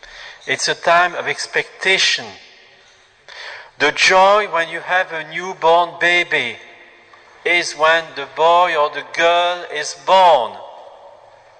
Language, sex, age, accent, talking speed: English, male, 50-69, French, 115 wpm